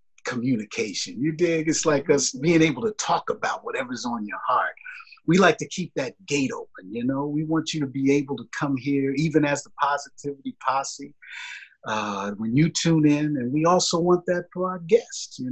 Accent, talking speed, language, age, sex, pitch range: American, 200 wpm, English, 50-69, male, 135-170 Hz